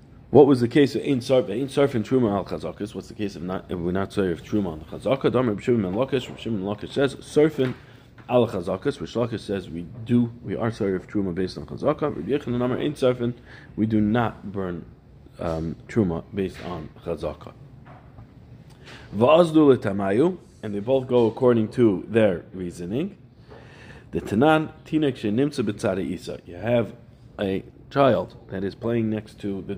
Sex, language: male, English